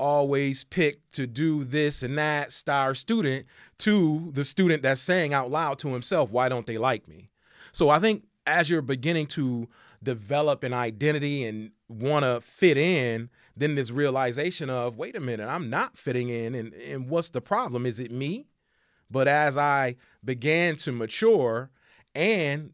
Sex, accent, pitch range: male, American, 125-165 Hz